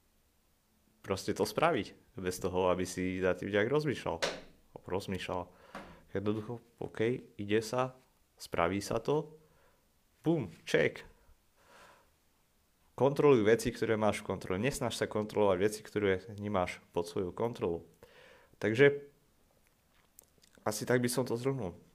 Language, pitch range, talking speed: Slovak, 95-115 Hz, 120 wpm